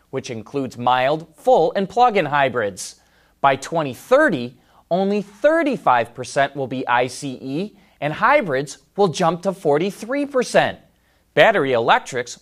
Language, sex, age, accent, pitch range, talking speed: English, male, 30-49, American, 135-200 Hz, 105 wpm